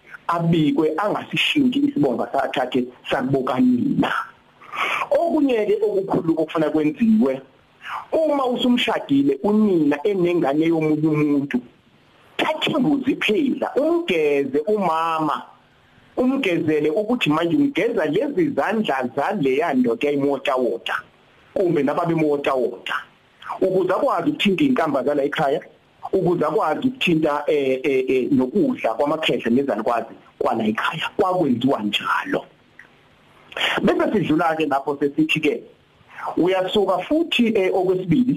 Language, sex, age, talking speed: English, male, 50-69, 110 wpm